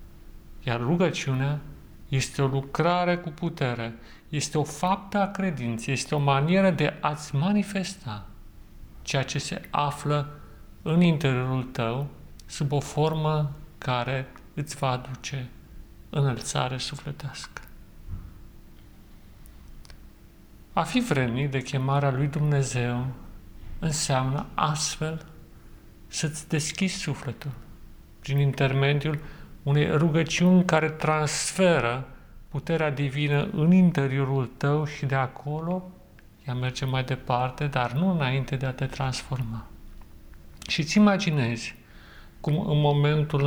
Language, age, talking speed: Romanian, 40-59, 105 wpm